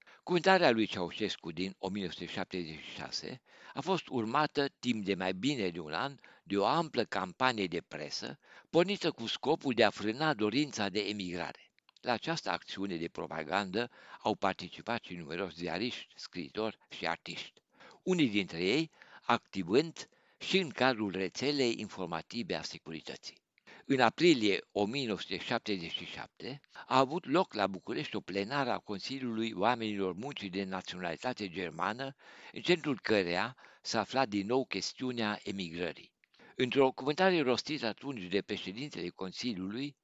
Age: 60-79